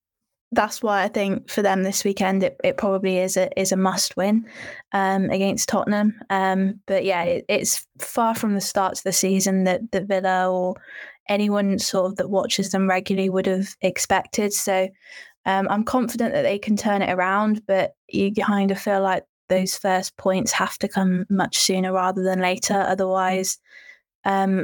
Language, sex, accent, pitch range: English, female, British, 190-205 Hz